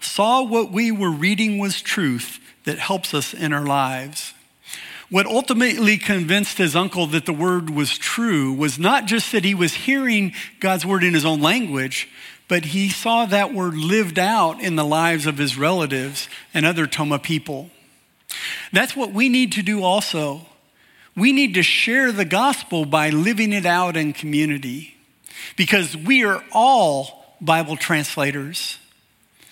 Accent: American